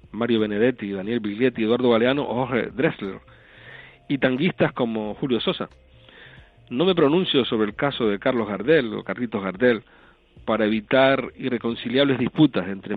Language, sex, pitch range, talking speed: Spanish, male, 100-125 Hz, 140 wpm